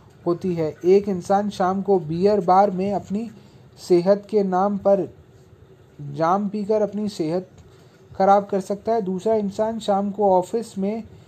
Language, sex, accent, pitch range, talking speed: Hindi, male, native, 180-215 Hz, 150 wpm